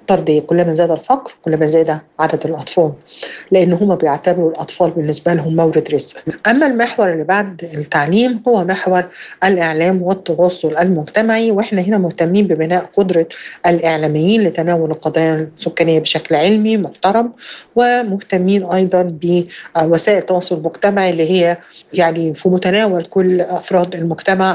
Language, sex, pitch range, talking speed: Arabic, female, 165-190 Hz, 130 wpm